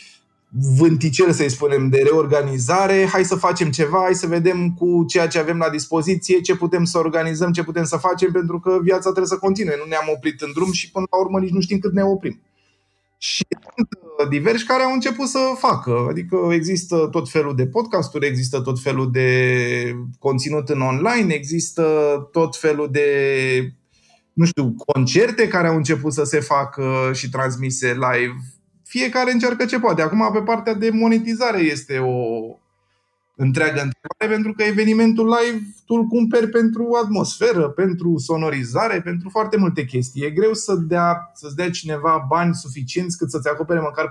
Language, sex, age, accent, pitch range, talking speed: Romanian, male, 20-39, native, 135-185 Hz, 170 wpm